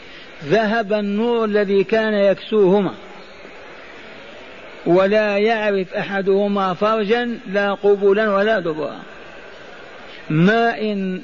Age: 50-69